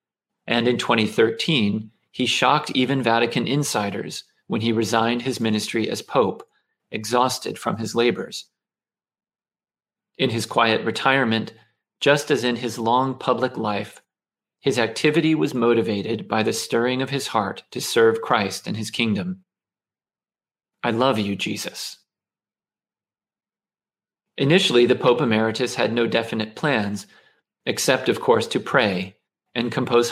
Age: 40-59